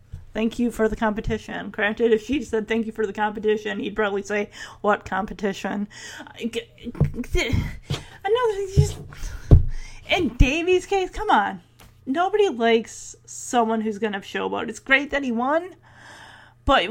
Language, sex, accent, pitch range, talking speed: English, female, American, 200-230 Hz, 135 wpm